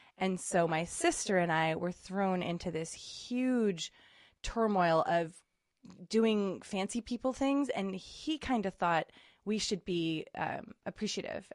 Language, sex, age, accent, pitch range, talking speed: English, female, 20-39, American, 165-210 Hz, 140 wpm